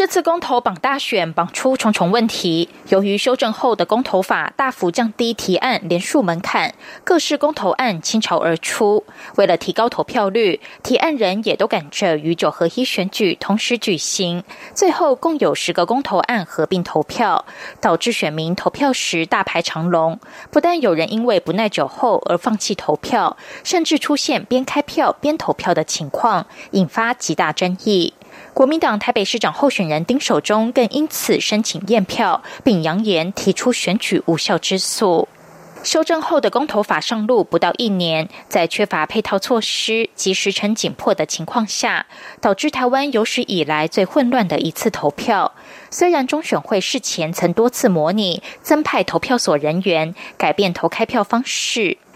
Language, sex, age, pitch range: German, female, 20-39, 175-255 Hz